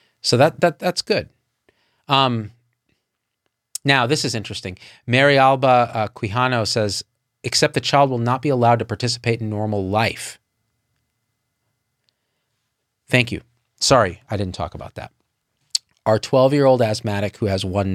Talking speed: 135 wpm